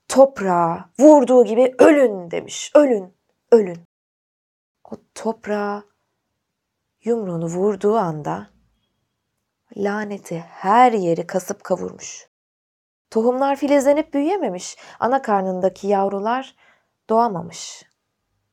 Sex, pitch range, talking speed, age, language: female, 180-250 Hz, 80 wpm, 20-39, Turkish